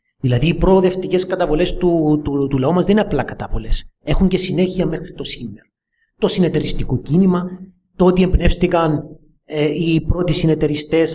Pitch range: 120-150 Hz